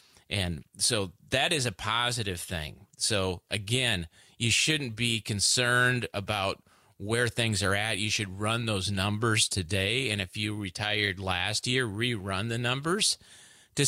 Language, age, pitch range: English, 30-49, 100-120 Hz